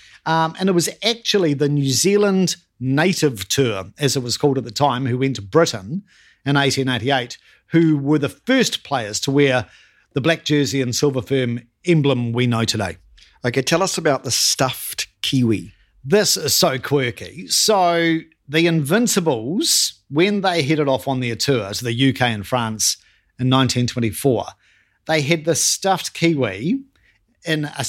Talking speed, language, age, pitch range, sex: 160 wpm, English, 50-69, 135-180 Hz, male